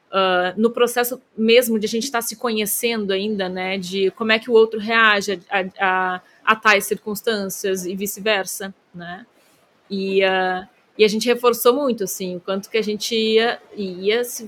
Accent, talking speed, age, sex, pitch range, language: Brazilian, 180 wpm, 20-39, female, 190-235 Hz, Portuguese